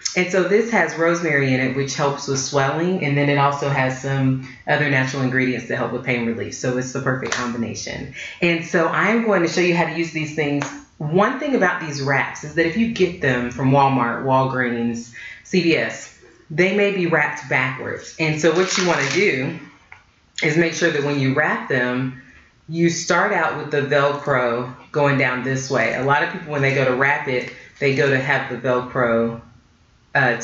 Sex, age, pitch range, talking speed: female, 30-49, 130-165 Hz, 205 wpm